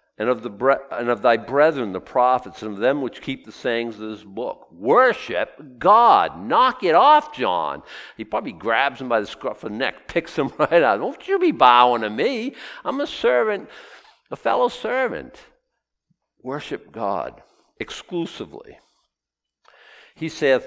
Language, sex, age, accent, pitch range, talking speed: English, male, 60-79, American, 120-185 Hz, 170 wpm